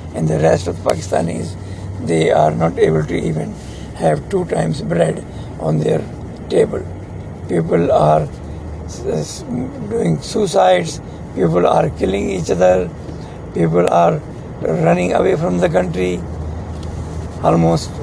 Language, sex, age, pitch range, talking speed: English, male, 60-79, 80-95 Hz, 115 wpm